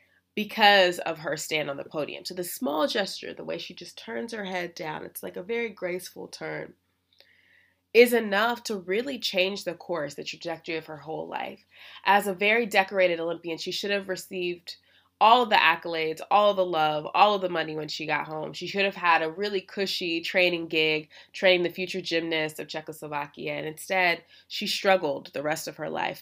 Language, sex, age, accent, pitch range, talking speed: English, female, 20-39, American, 160-195 Hz, 200 wpm